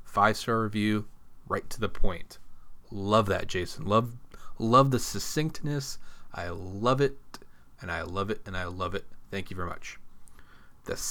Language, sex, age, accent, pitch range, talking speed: English, male, 30-49, American, 95-135 Hz, 160 wpm